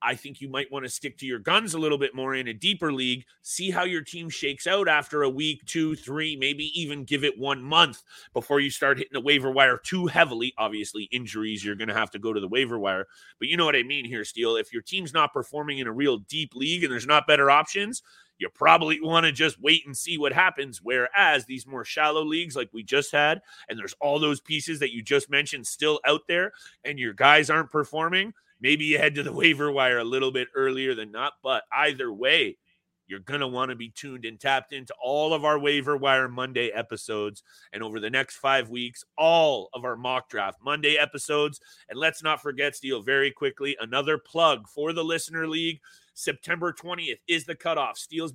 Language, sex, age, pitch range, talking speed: English, male, 30-49, 135-160 Hz, 225 wpm